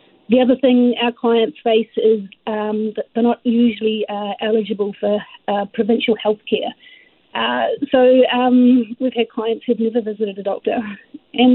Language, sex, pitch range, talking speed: English, female, 215-245 Hz, 160 wpm